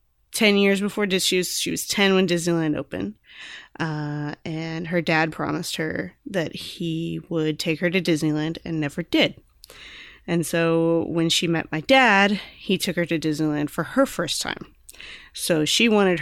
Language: English